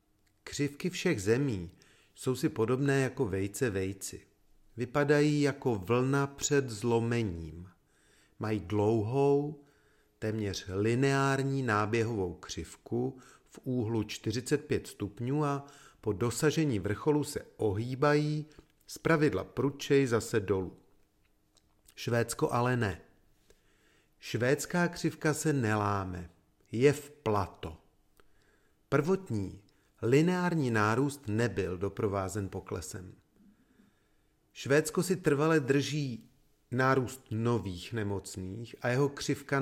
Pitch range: 105-140 Hz